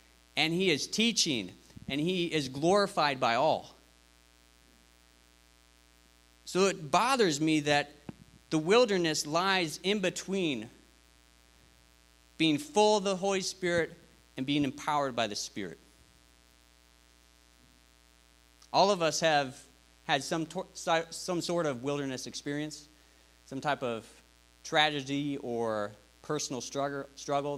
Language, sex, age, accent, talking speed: English, male, 40-59, American, 110 wpm